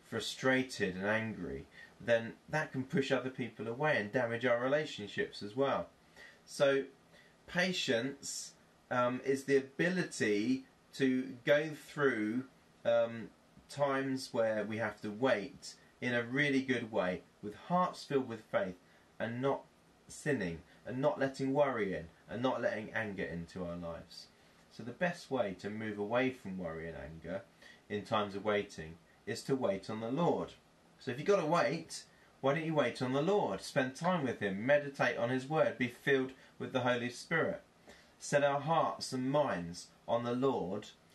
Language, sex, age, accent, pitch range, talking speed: English, male, 30-49, British, 105-135 Hz, 165 wpm